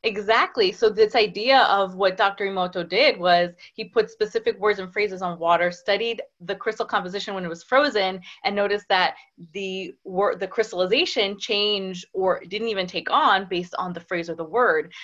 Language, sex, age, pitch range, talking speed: English, female, 20-39, 185-235 Hz, 185 wpm